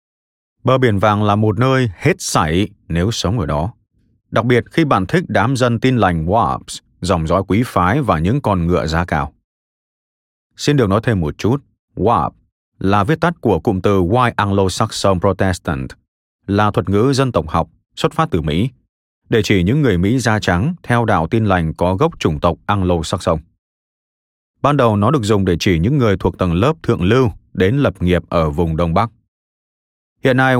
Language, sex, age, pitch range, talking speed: Vietnamese, male, 20-39, 90-125 Hz, 190 wpm